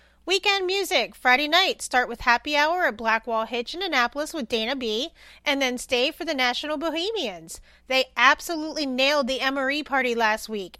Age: 30-49